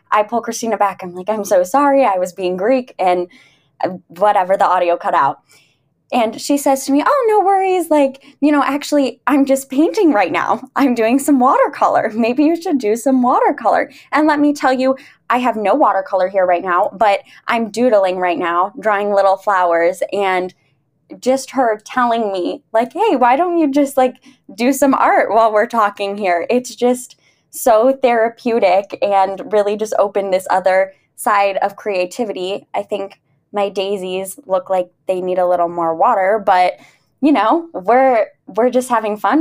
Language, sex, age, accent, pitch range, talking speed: English, female, 20-39, American, 195-270 Hz, 180 wpm